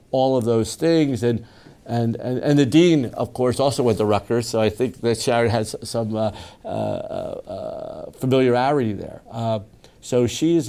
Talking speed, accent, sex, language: 175 wpm, American, male, English